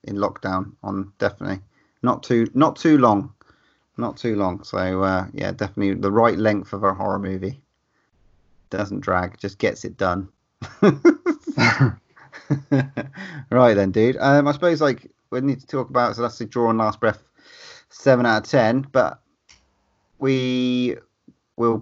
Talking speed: 150 wpm